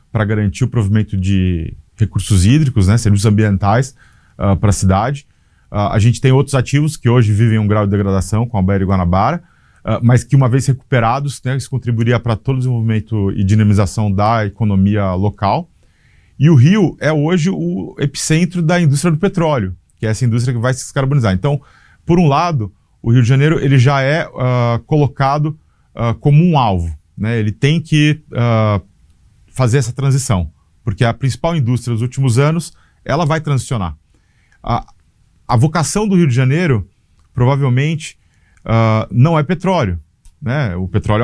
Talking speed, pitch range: 165 wpm, 105-145 Hz